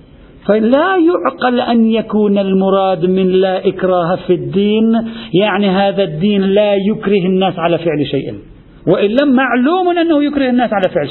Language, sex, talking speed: Arabic, male, 145 wpm